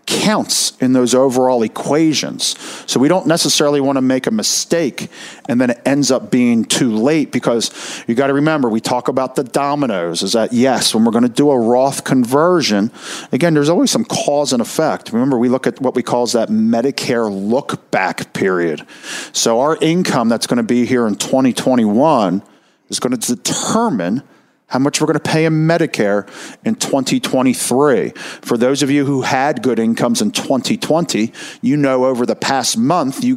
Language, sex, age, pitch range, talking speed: English, male, 40-59, 130-165 Hz, 185 wpm